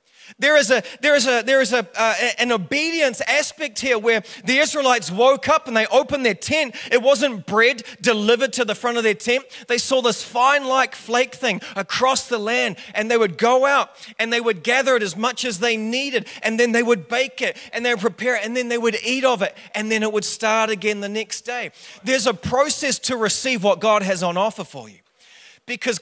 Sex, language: male, English